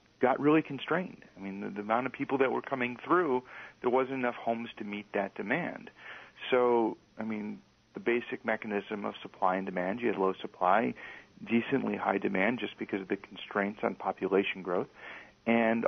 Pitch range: 100-125 Hz